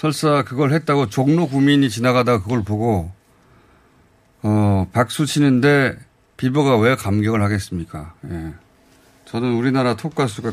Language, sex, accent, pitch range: Korean, male, native, 100-145 Hz